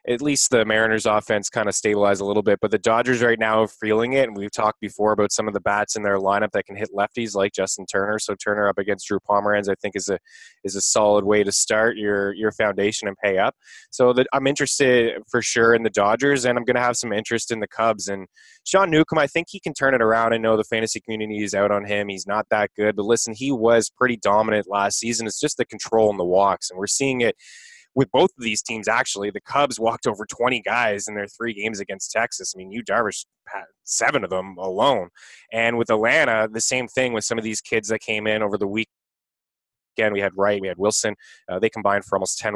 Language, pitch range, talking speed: English, 100-115 Hz, 250 wpm